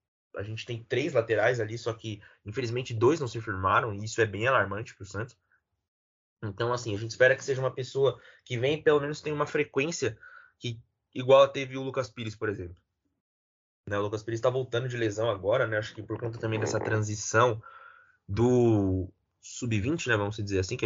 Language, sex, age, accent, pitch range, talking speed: Portuguese, male, 20-39, Brazilian, 105-145 Hz, 200 wpm